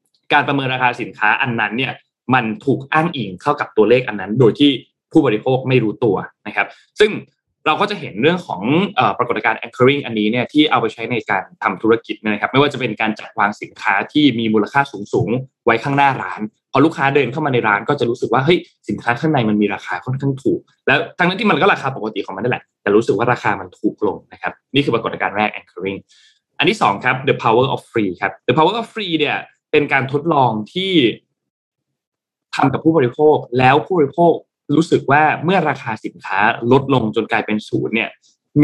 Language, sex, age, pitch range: Thai, male, 20-39, 115-150 Hz